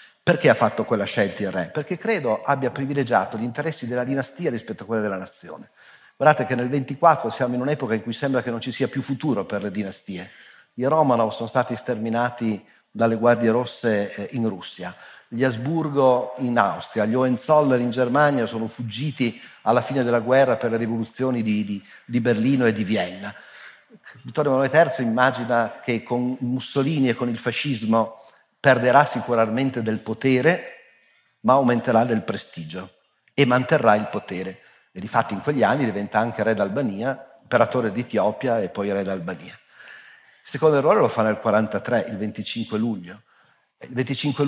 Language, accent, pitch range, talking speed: Italian, native, 115-135 Hz, 165 wpm